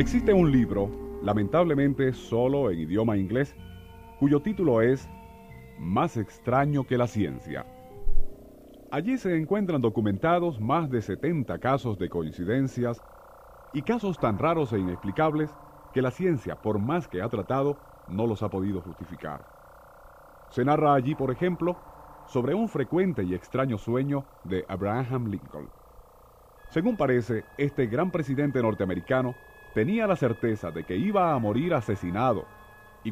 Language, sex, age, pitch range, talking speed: Spanish, male, 40-59, 105-155 Hz, 135 wpm